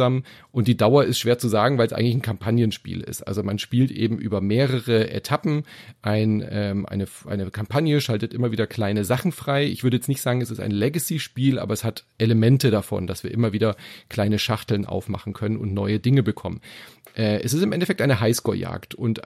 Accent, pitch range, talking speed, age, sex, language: German, 105-130 Hz, 200 wpm, 40-59, male, German